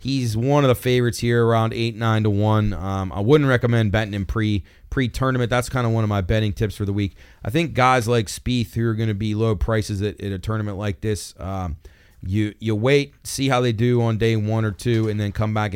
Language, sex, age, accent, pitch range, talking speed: English, male, 30-49, American, 100-120 Hz, 250 wpm